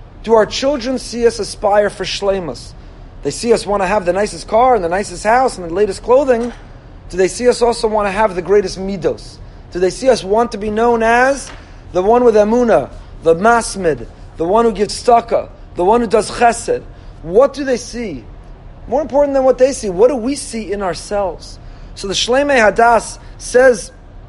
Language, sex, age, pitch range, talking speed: English, male, 30-49, 205-305 Hz, 205 wpm